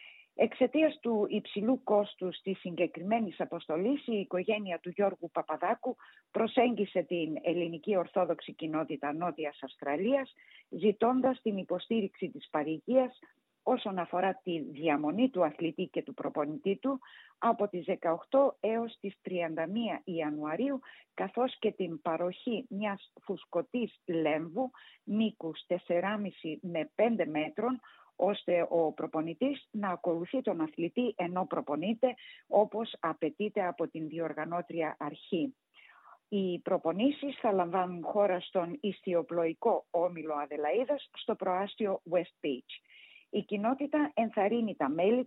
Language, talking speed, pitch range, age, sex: Greek, 115 wpm, 165-230 Hz, 50-69, female